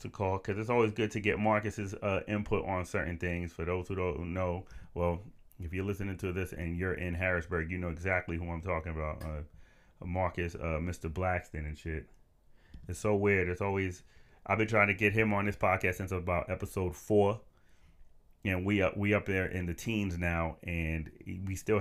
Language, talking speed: English, 205 wpm